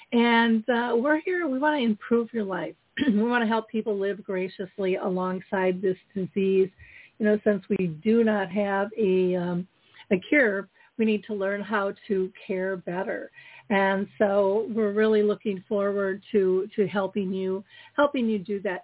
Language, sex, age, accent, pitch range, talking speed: English, female, 50-69, American, 195-225 Hz, 165 wpm